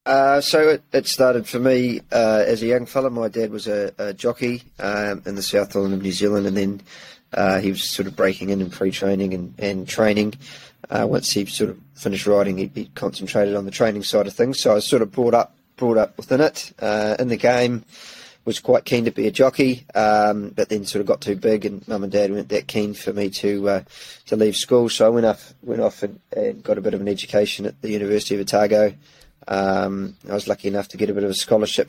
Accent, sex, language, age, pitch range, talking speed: Australian, male, English, 20-39, 100-115 Hz, 245 wpm